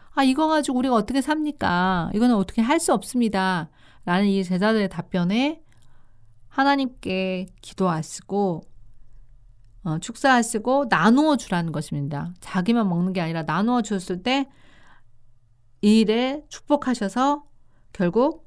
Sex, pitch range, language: female, 175-245 Hz, Korean